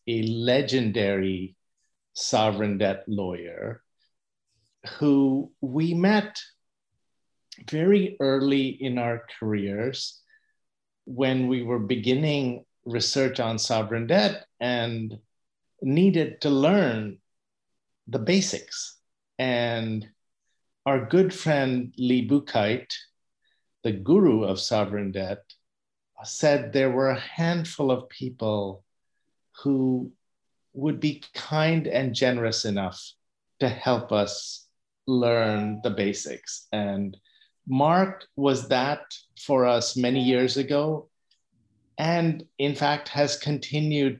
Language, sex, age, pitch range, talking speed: English, male, 50-69, 105-145 Hz, 100 wpm